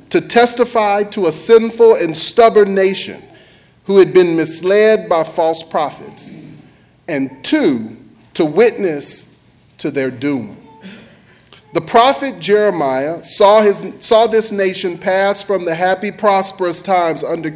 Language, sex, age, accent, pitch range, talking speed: English, male, 40-59, American, 160-215 Hz, 125 wpm